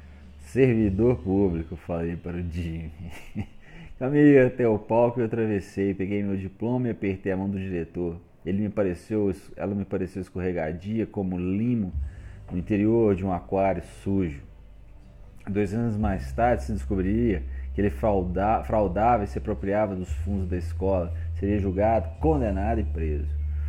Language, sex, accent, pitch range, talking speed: Portuguese, male, Brazilian, 80-105 Hz, 145 wpm